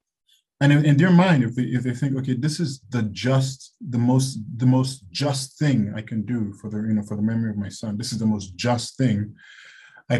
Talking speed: 235 wpm